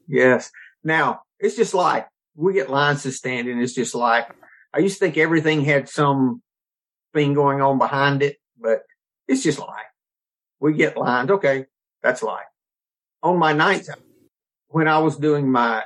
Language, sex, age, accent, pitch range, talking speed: English, male, 50-69, American, 125-155 Hz, 165 wpm